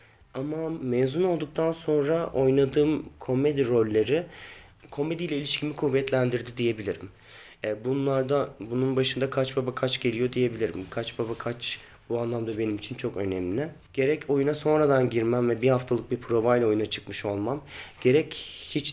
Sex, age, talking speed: male, 30-49, 135 wpm